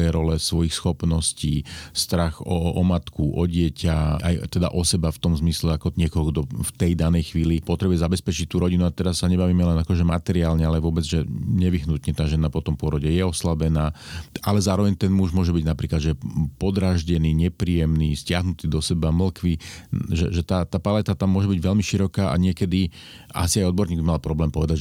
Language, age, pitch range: Slovak, 40-59, 80-90 Hz